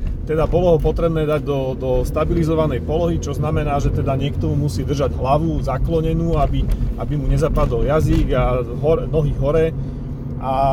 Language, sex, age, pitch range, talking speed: Slovak, male, 40-59, 140-170 Hz, 160 wpm